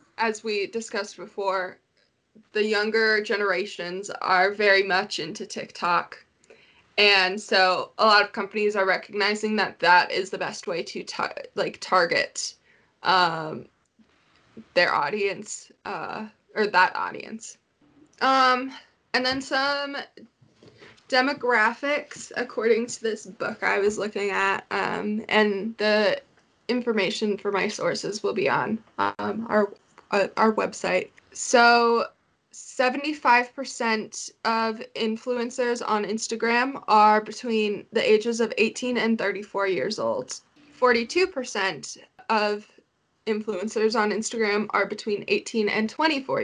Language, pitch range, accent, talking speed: English, 205-245 Hz, American, 115 wpm